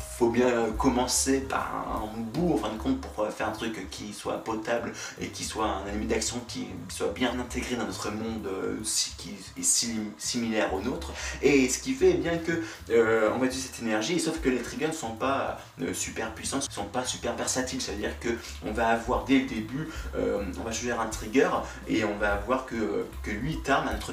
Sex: male